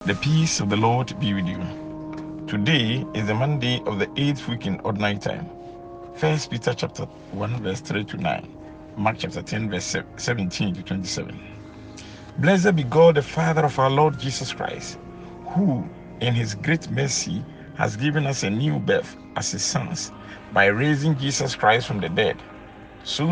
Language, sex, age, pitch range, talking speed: English, male, 50-69, 105-150 Hz, 170 wpm